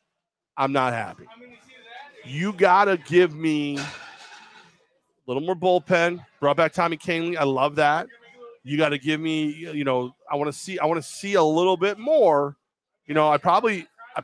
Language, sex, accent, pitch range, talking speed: English, male, American, 150-195 Hz, 175 wpm